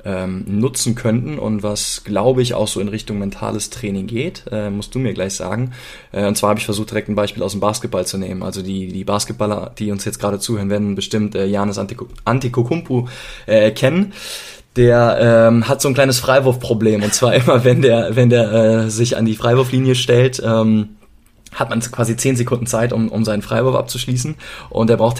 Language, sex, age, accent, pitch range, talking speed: German, male, 20-39, German, 105-120 Hz, 200 wpm